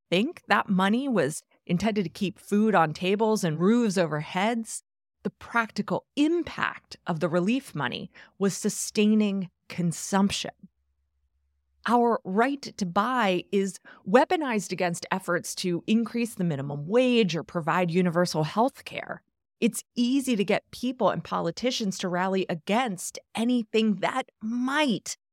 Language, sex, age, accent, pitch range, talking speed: English, female, 30-49, American, 180-240 Hz, 130 wpm